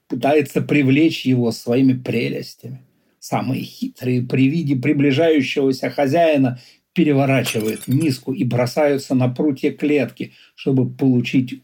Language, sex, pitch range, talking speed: Russian, male, 120-150 Hz, 105 wpm